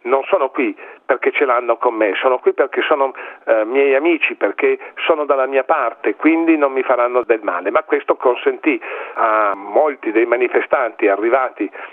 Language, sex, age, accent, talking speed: Italian, male, 50-69, native, 170 wpm